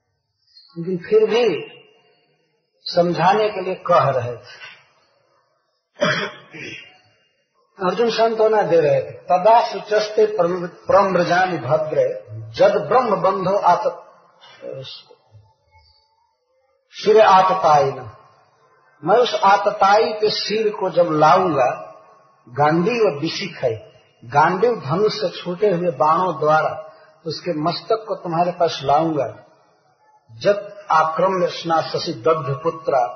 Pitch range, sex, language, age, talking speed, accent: 155-210 Hz, male, Hindi, 50-69, 100 wpm, native